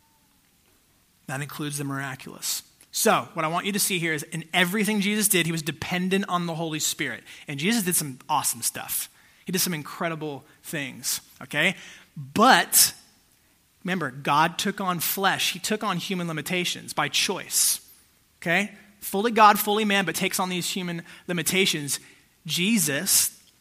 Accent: American